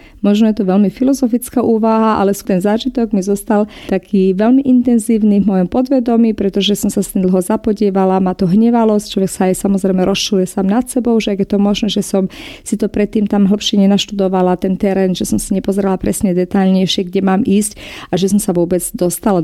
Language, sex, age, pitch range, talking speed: Slovak, female, 30-49, 195-230 Hz, 205 wpm